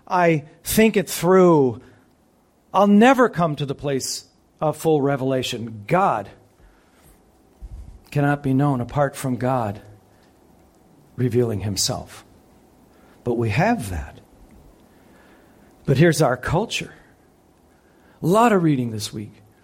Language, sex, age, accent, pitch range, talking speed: English, male, 50-69, American, 120-165 Hz, 110 wpm